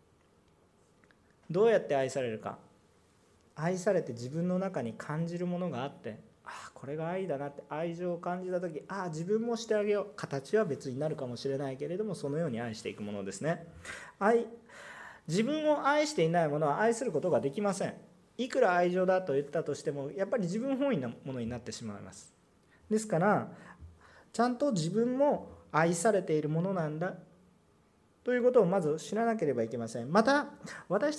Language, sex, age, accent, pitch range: Japanese, male, 40-59, native, 150-240 Hz